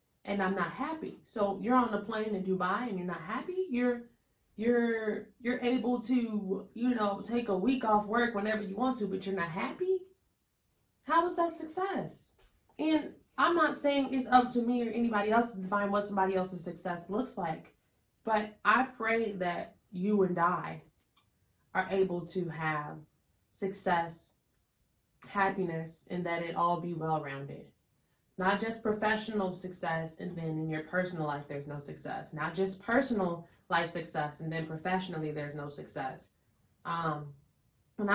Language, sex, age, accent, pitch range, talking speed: English, female, 20-39, American, 155-210 Hz, 160 wpm